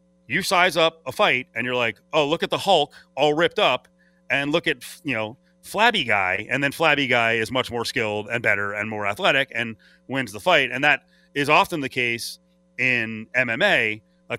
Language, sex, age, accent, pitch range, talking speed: English, male, 30-49, American, 110-155 Hz, 205 wpm